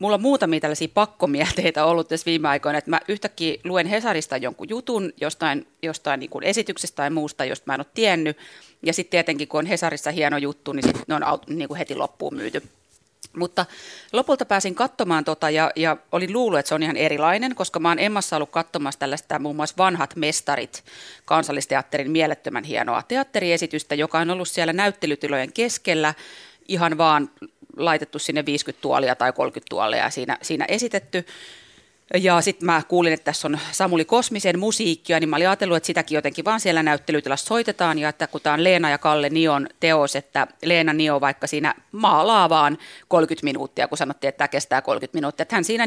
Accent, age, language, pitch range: native, 30-49, Finnish, 150-190 Hz